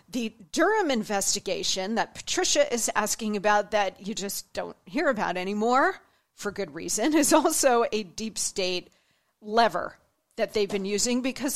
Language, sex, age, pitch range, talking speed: English, female, 40-59, 215-290 Hz, 150 wpm